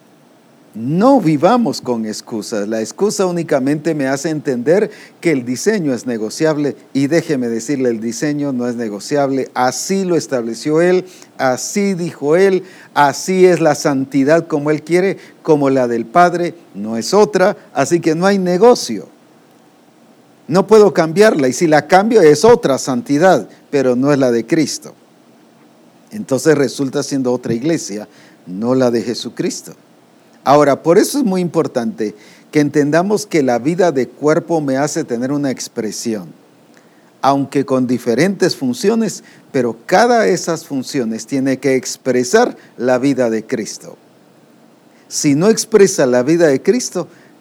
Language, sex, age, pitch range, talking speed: English, male, 50-69, 125-170 Hz, 145 wpm